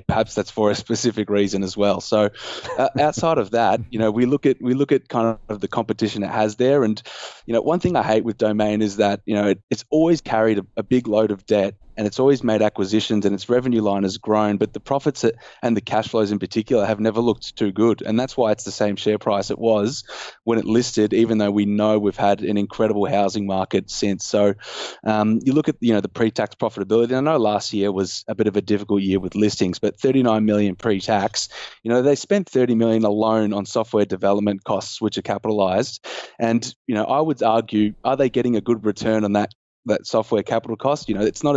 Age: 20-39